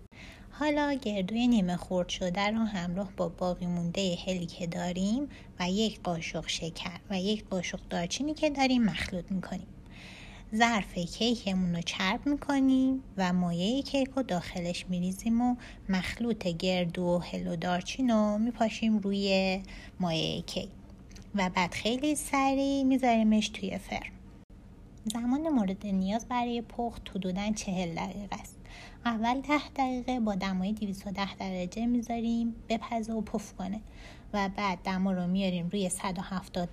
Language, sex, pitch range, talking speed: Persian, female, 180-230 Hz, 135 wpm